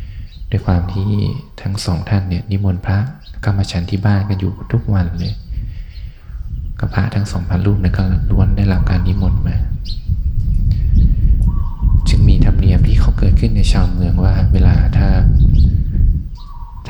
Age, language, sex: 20-39, Thai, male